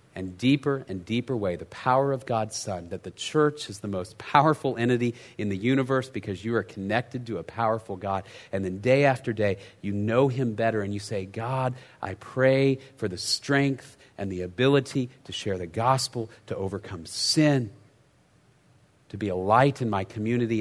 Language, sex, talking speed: English, male, 185 wpm